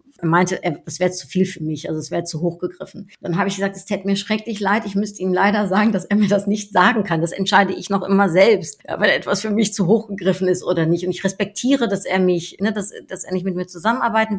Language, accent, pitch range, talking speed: German, German, 185-225 Hz, 275 wpm